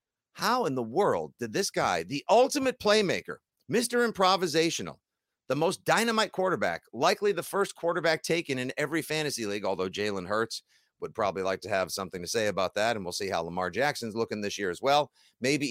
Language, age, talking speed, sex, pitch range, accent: English, 50-69, 190 wpm, male, 115-185 Hz, American